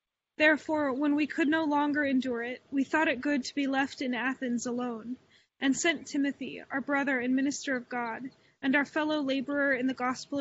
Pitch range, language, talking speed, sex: 245-290 Hz, English, 195 wpm, female